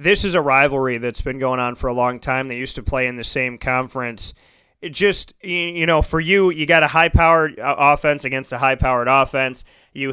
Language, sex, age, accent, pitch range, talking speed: English, male, 30-49, American, 135-155 Hz, 215 wpm